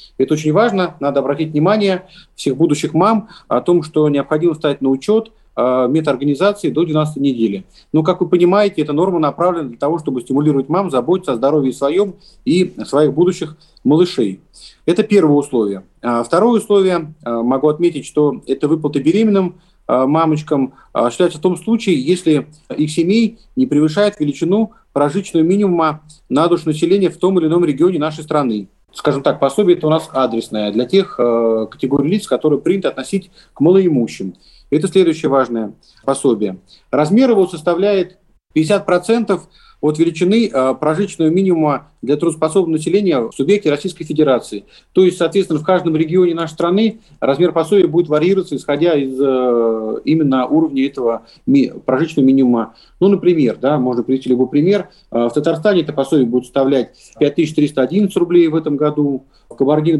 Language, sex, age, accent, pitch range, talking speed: Russian, male, 40-59, native, 140-185 Hz, 155 wpm